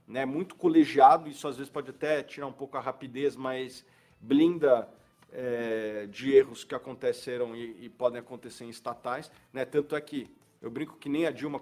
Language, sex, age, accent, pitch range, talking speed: Portuguese, male, 40-59, Brazilian, 125-160 Hz, 190 wpm